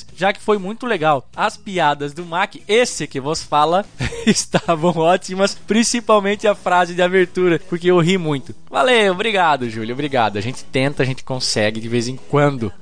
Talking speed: 180 wpm